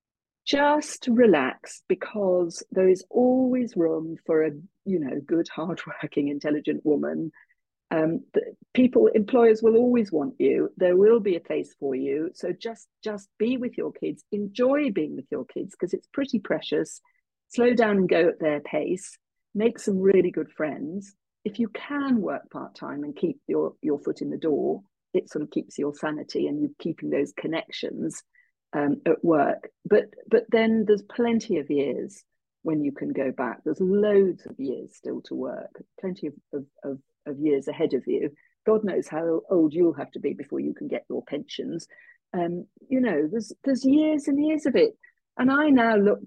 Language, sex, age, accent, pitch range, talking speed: English, female, 50-69, British, 180-265 Hz, 180 wpm